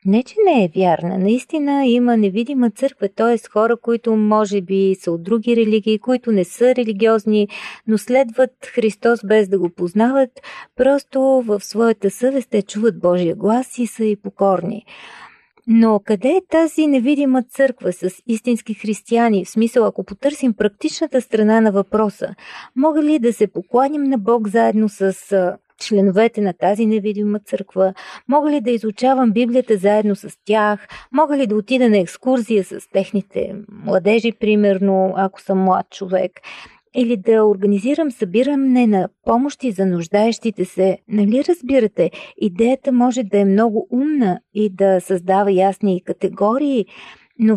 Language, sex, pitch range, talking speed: Bulgarian, female, 200-255 Hz, 150 wpm